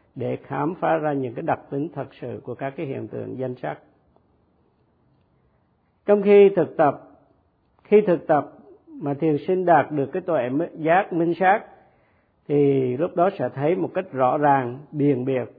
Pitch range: 130-165 Hz